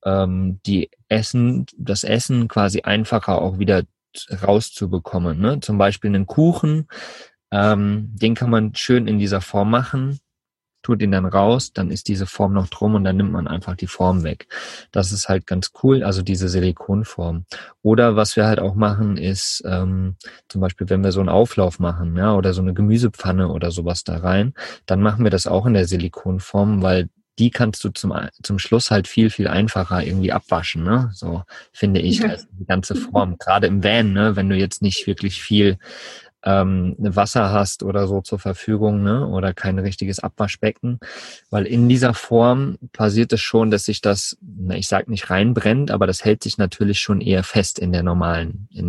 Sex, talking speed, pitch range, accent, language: male, 185 wpm, 95-110 Hz, German, German